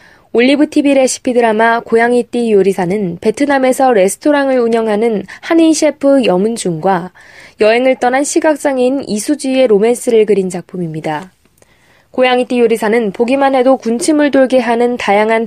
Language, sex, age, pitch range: Korean, female, 20-39, 210-265 Hz